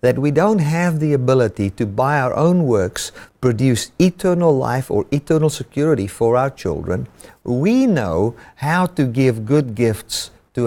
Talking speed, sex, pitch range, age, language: 155 wpm, male, 110-150 Hz, 50-69, English